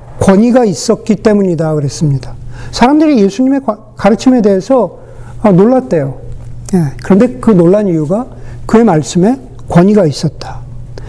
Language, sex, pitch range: Korean, male, 160-245 Hz